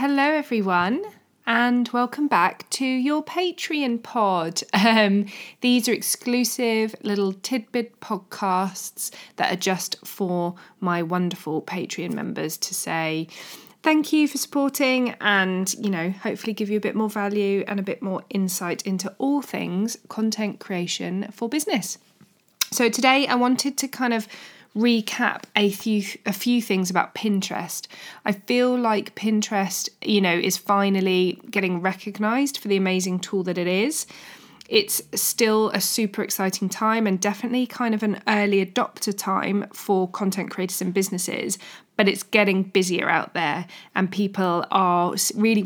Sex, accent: female, British